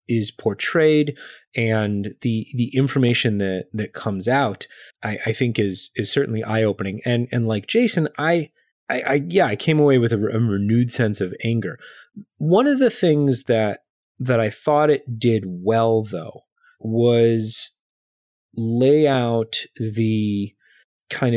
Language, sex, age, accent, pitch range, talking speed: English, male, 30-49, American, 100-130 Hz, 150 wpm